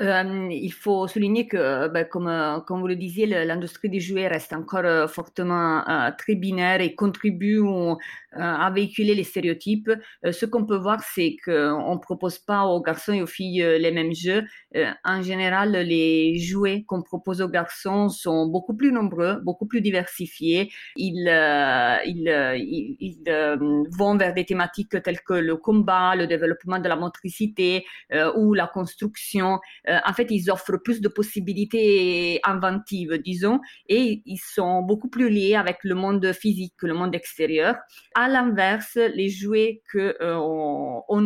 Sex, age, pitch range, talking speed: female, 30-49, 170-210 Hz, 165 wpm